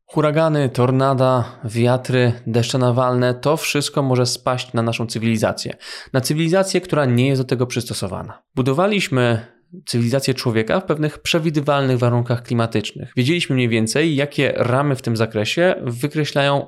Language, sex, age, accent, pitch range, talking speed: Polish, male, 20-39, native, 115-135 Hz, 135 wpm